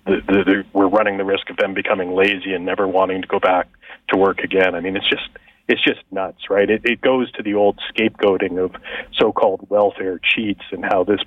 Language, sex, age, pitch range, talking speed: English, male, 40-59, 95-110 Hz, 220 wpm